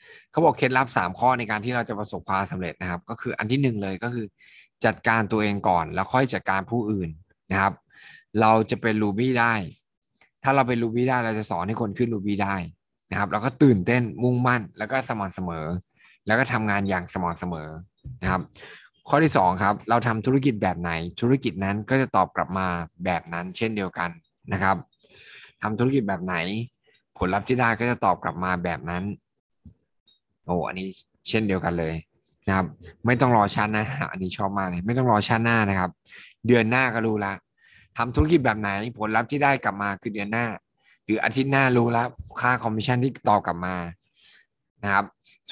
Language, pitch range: Thai, 95-120 Hz